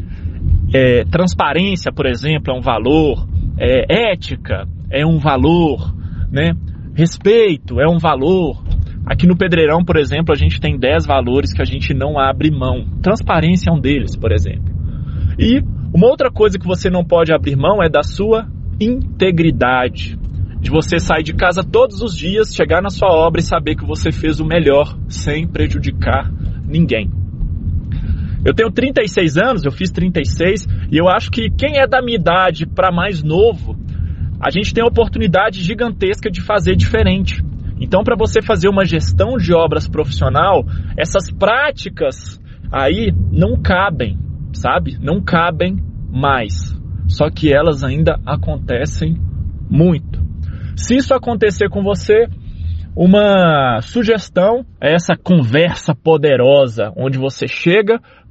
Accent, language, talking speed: Brazilian, Portuguese, 145 wpm